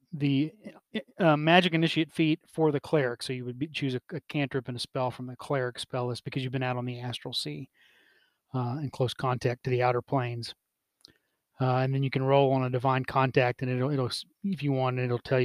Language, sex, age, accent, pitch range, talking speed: English, male, 30-49, American, 125-150 Hz, 225 wpm